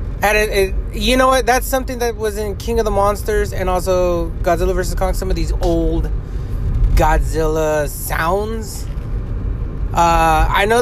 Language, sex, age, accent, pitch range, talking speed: English, male, 20-39, American, 120-185 Hz, 160 wpm